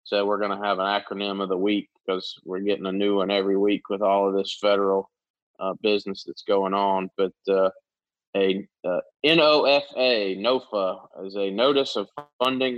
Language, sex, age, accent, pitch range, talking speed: English, male, 20-39, American, 100-115 Hz, 185 wpm